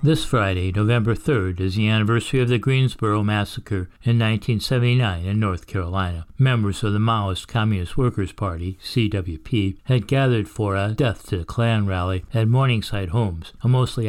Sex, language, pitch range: male, English, 95-120 Hz